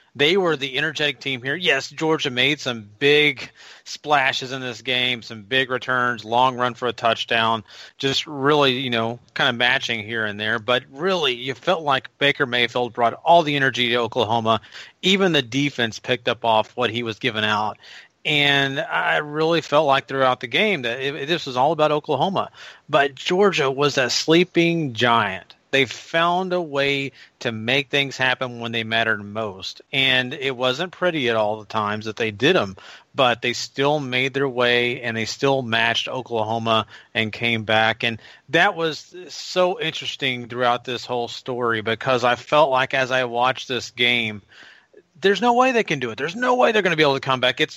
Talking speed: 190 wpm